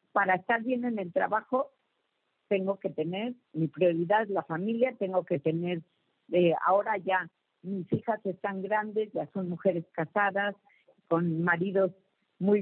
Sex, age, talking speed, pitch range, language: female, 50-69, 145 wpm, 180-220 Hz, Spanish